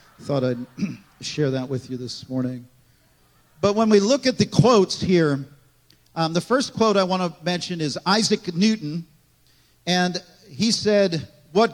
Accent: American